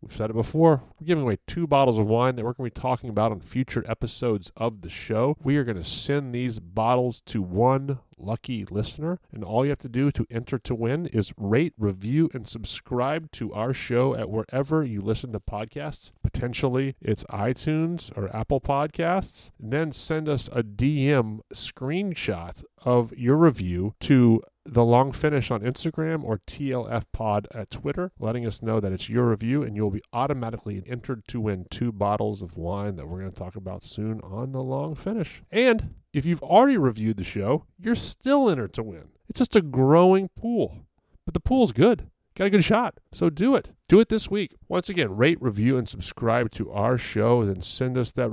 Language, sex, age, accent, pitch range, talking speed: English, male, 30-49, American, 110-145 Hz, 195 wpm